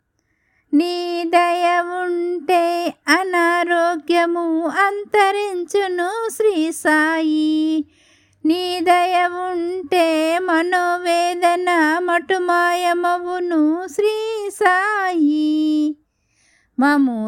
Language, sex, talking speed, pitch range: Telugu, female, 45 wpm, 315-365 Hz